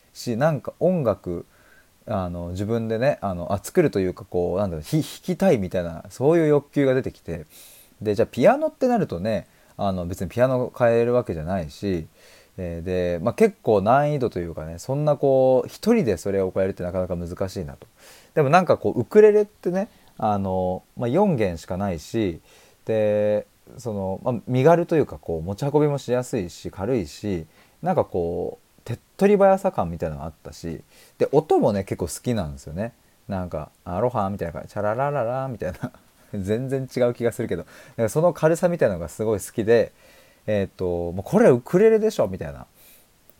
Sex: male